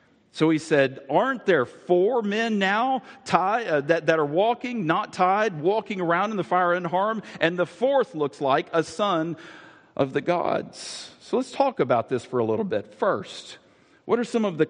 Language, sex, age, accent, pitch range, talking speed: English, male, 50-69, American, 135-195 Hz, 185 wpm